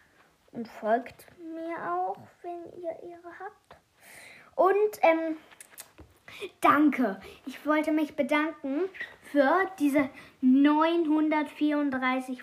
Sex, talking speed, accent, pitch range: female, 85 wpm, German, 215-295 Hz